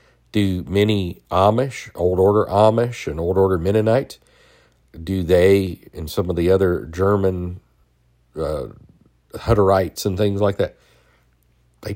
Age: 50-69